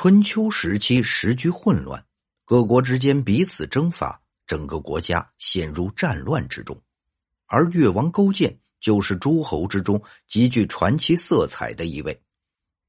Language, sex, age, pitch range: Chinese, male, 50-69, 90-150 Hz